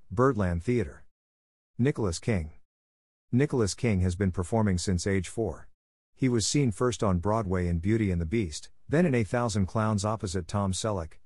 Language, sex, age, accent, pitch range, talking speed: English, male, 50-69, American, 90-115 Hz, 165 wpm